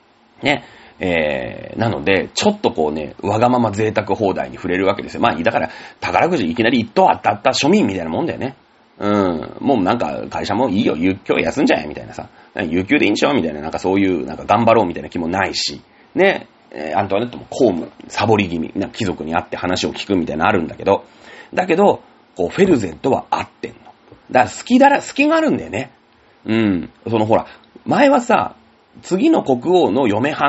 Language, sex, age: Japanese, male, 40-59